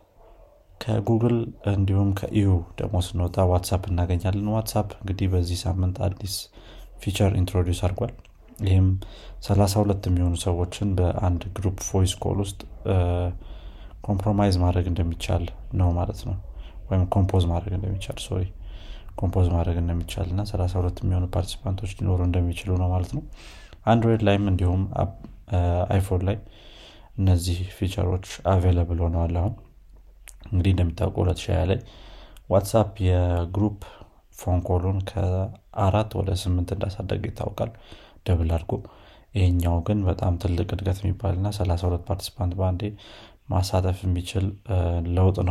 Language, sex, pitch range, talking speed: Amharic, male, 90-100 Hz, 95 wpm